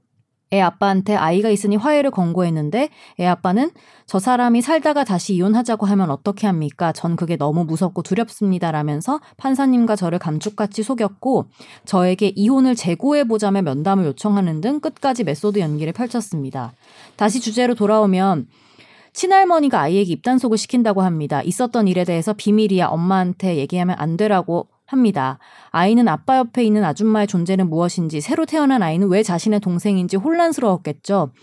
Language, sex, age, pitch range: Korean, female, 30-49, 180-245 Hz